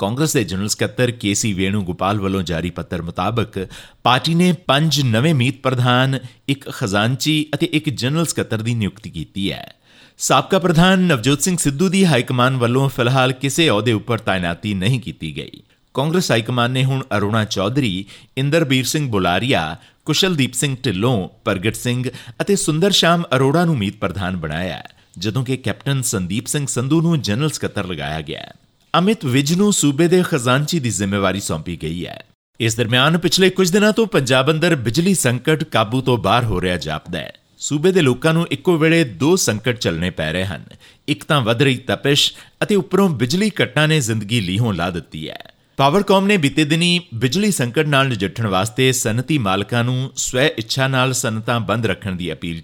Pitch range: 105-155 Hz